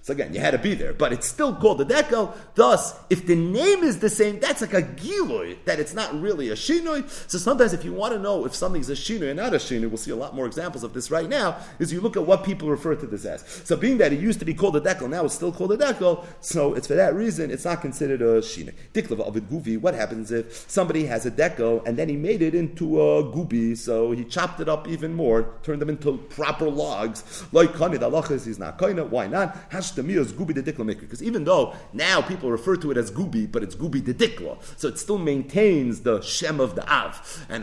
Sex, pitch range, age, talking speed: male, 120-190 Hz, 40-59, 255 wpm